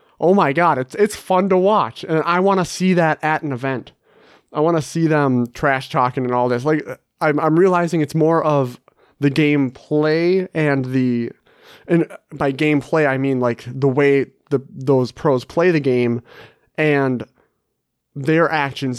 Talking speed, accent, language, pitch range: 175 wpm, American, English, 125-155 Hz